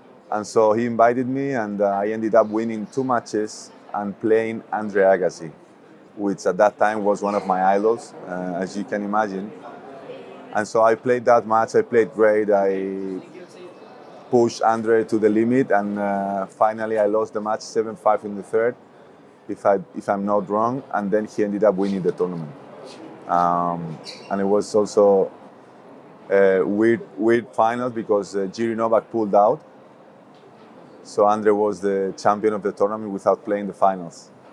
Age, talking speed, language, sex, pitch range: 30-49, 170 wpm, English, male, 95-110 Hz